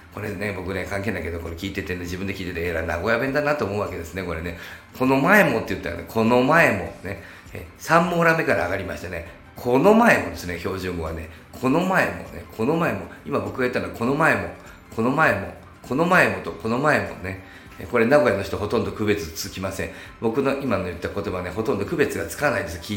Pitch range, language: 90-115 Hz, Japanese